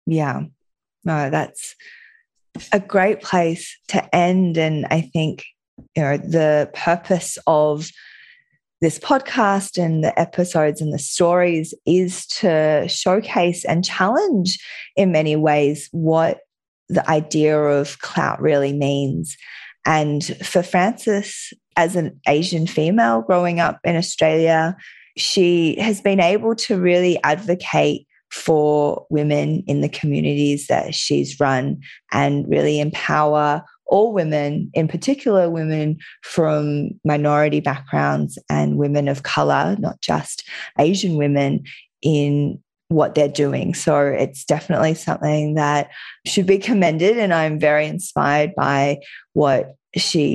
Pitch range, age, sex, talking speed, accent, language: 145-180 Hz, 20-39, female, 120 wpm, Australian, English